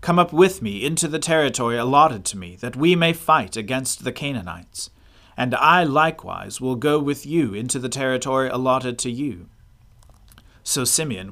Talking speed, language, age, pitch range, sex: 170 wpm, English, 40-59, 105-150 Hz, male